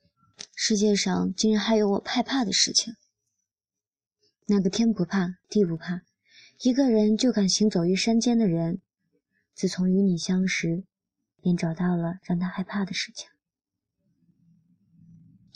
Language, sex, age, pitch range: Chinese, male, 20-39, 175-210 Hz